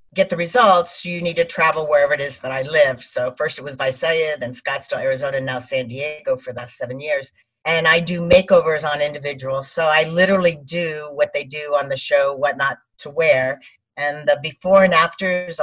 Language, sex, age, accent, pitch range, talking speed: English, female, 50-69, American, 140-185 Hz, 210 wpm